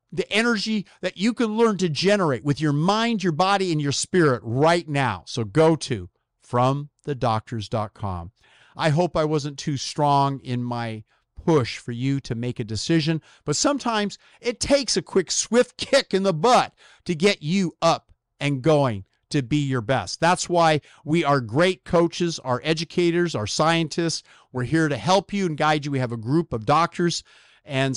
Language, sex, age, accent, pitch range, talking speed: English, male, 50-69, American, 120-165 Hz, 180 wpm